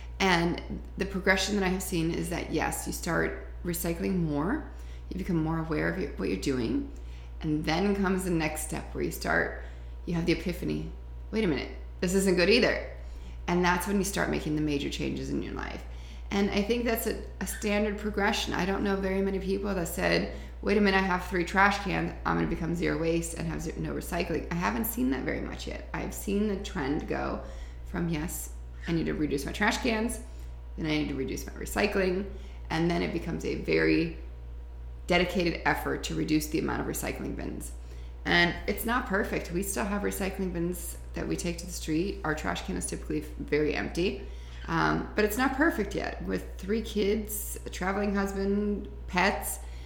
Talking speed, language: 200 wpm, English